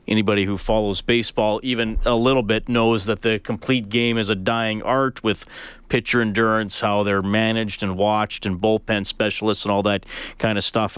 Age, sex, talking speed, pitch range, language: 40-59, male, 185 wpm, 105-120 Hz, English